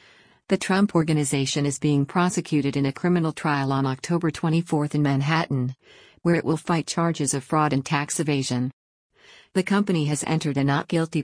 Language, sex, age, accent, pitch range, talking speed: English, female, 50-69, American, 140-170 Hz, 165 wpm